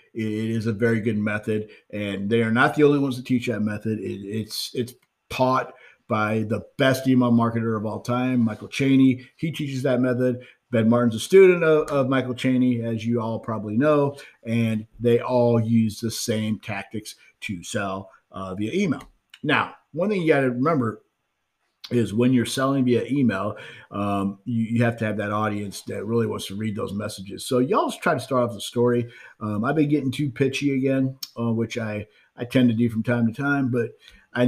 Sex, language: male, English